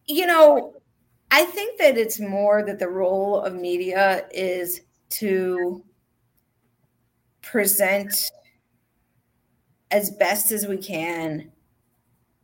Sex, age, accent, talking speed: female, 30-49, American, 95 wpm